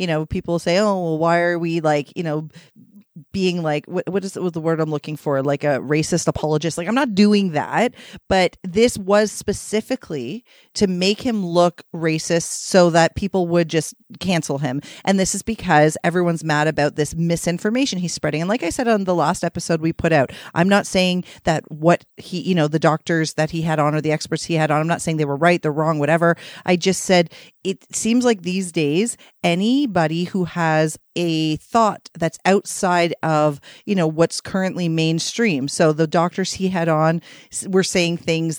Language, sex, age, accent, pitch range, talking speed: English, female, 30-49, American, 160-195 Hz, 200 wpm